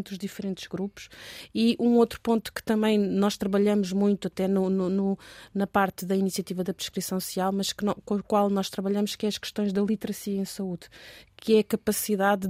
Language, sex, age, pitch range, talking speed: Portuguese, female, 20-39, 195-220 Hz, 185 wpm